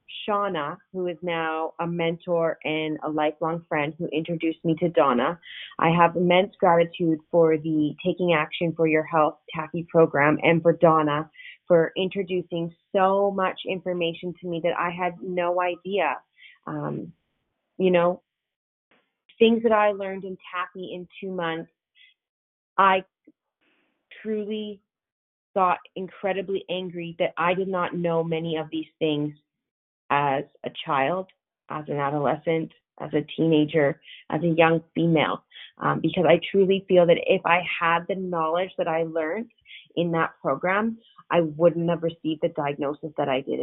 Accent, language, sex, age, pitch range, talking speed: American, English, female, 30-49, 160-185 Hz, 150 wpm